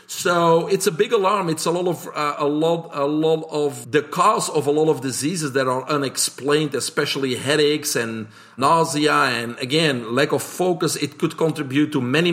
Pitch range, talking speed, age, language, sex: 140-165 Hz, 190 wpm, 50-69, English, male